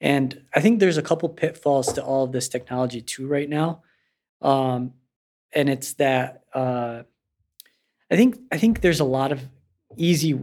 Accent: American